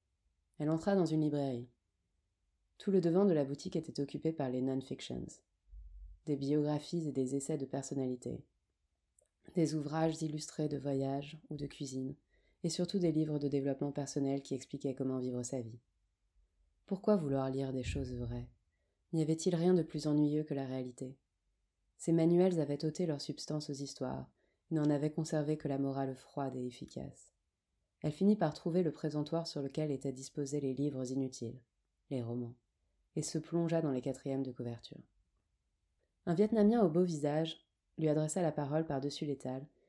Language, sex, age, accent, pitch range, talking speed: French, female, 20-39, French, 125-155 Hz, 165 wpm